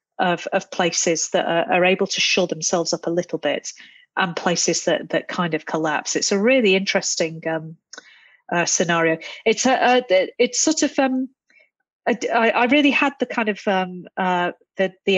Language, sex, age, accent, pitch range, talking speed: English, female, 40-59, British, 175-225 Hz, 180 wpm